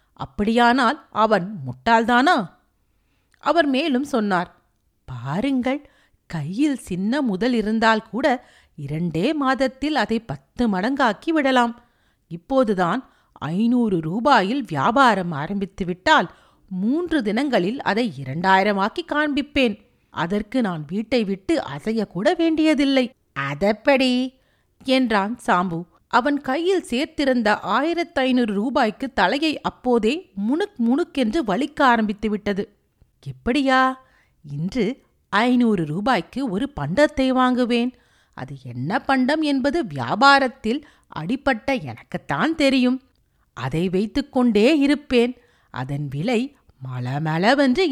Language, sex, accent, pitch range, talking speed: Tamil, female, native, 180-265 Hz, 90 wpm